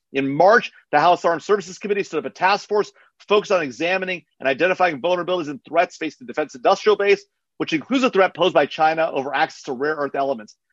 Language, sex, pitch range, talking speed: English, male, 160-200 Hz, 215 wpm